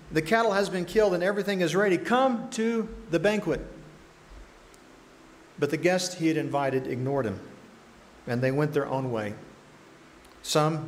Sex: male